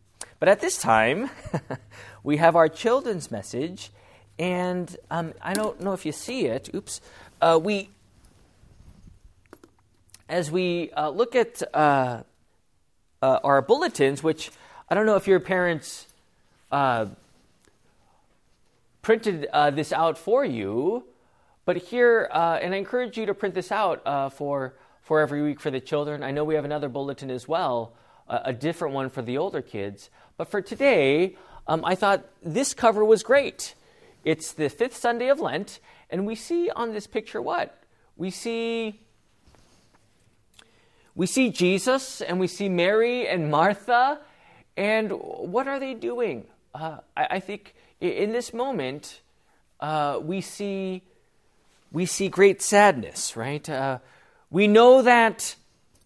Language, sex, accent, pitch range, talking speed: English, male, American, 145-220 Hz, 145 wpm